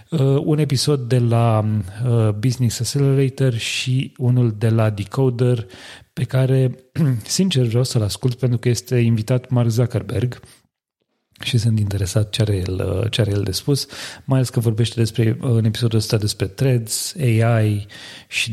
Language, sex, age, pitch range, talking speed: Romanian, male, 30-49, 110-135 Hz, 140 wpm